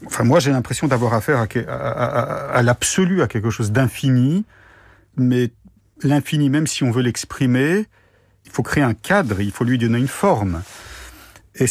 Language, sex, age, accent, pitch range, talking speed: French, male, 50-69, French, 105-145 Hz, 180 wpm